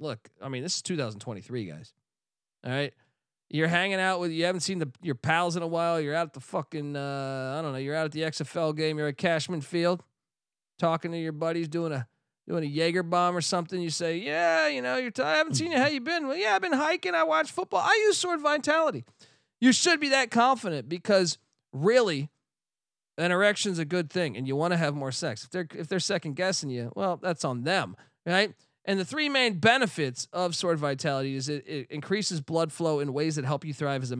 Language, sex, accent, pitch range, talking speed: English, male, American, 145-190 Hz, 235 wpm